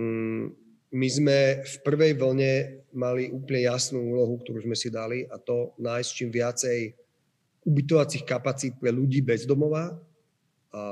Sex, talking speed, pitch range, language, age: male, 130 wpm, 120-145 Hz, Slovak, 30-49